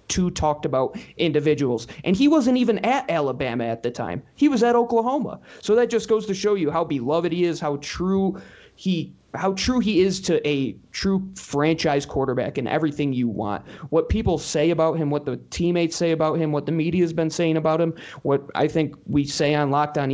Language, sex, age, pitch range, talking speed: English, male, 20-39, 145-175 Hz, 205 wpm